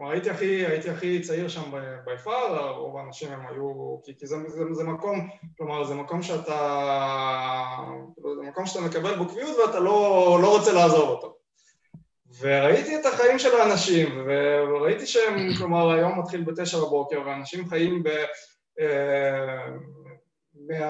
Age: 20-39